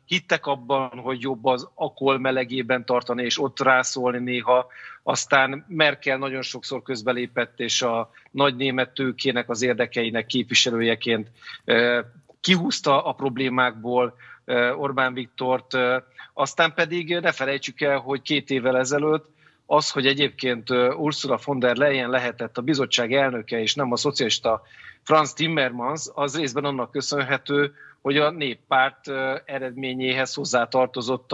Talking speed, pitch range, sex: 125 wpm, 125-145 Hz, male